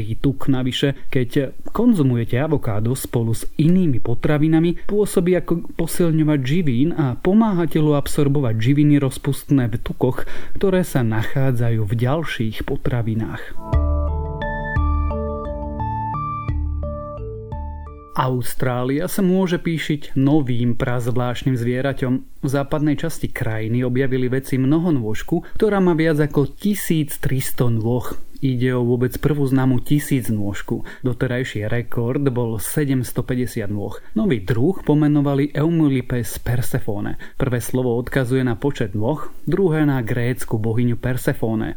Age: 30-49